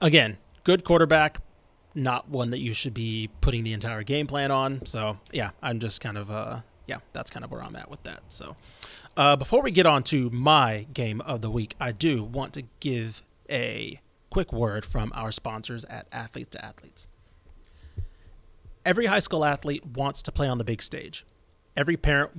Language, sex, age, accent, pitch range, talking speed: English, male, 30-49, American, 115-145 Hz, 190 wpm